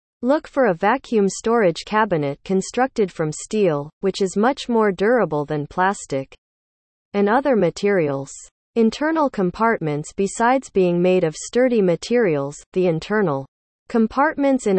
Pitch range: 160-230 Hz